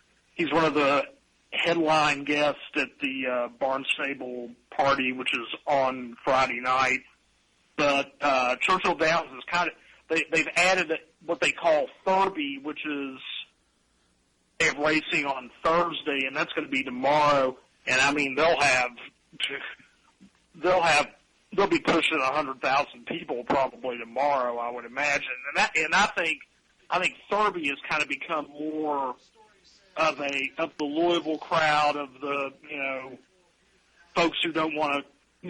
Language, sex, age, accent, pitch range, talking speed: English, male, 40-59, American, 135-165 Hz, 145 wpm